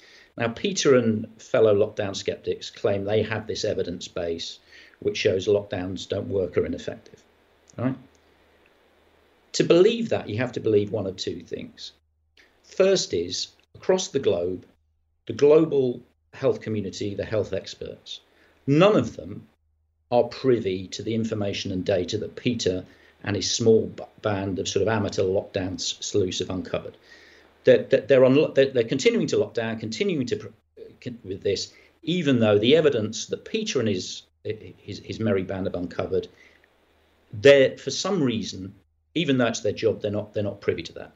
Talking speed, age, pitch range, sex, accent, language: 160 wpm, 50-69, 85-135 Hz, male, British, English